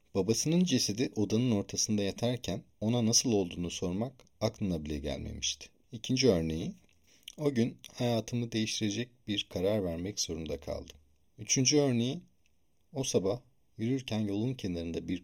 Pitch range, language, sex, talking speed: 90-120 Hz, Turkish, male, 120 wpm